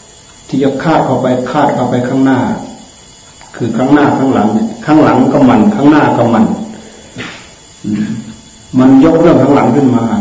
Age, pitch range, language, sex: 60-79, 110-135 Hz, Thai, male